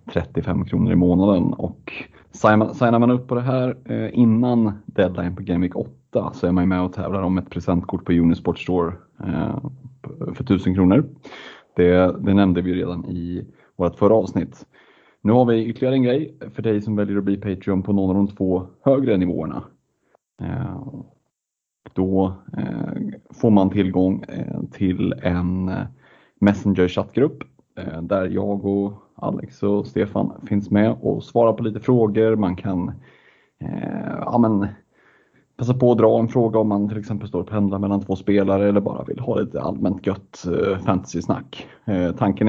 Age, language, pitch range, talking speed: 30-49, Swedish, 90-115 Hz, 160 wpm